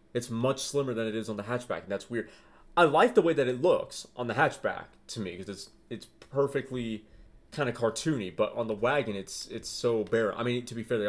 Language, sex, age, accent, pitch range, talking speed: English, male, 30-49, American, 110-165 Hz, 245 wpm